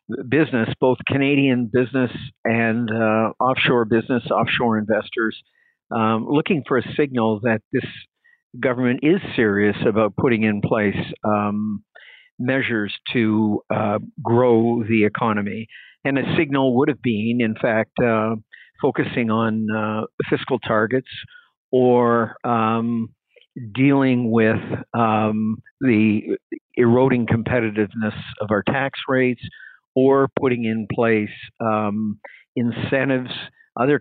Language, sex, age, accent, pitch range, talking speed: English, male, 50-69, American, 110-130 Hz, 115 wpm